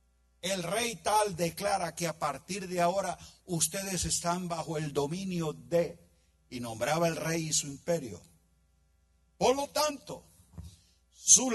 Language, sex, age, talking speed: Spanish, male, 50-69, 135 wpm